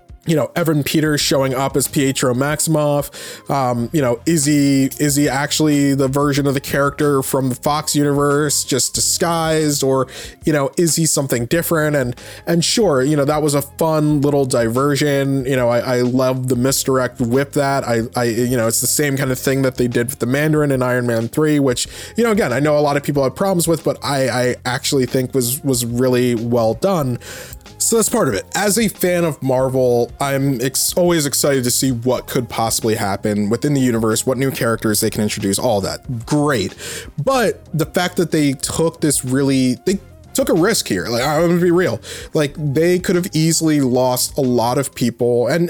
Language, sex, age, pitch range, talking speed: English, male, 20-39, 125-150 Hz, 210 wpm